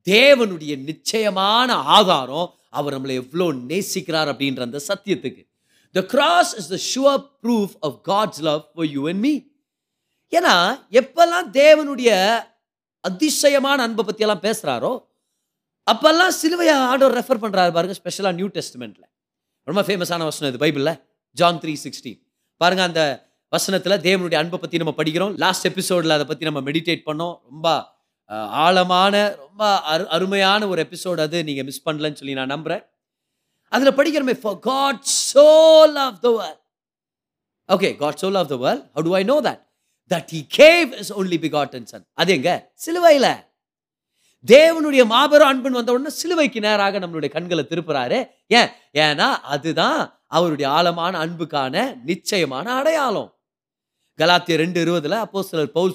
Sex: male